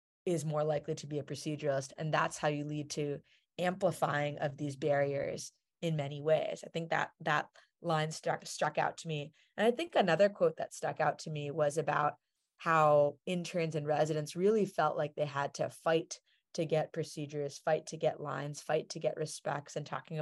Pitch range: 150-170 Hz